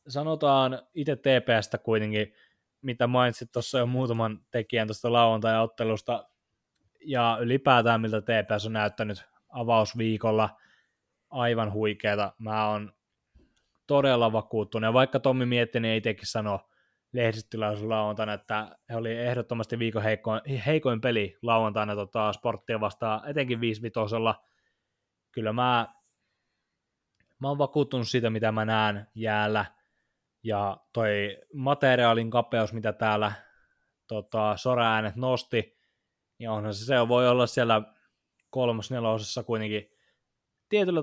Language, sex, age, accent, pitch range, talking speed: Finnish, male, 20-39, native, 105-125 Hz, 115 wpm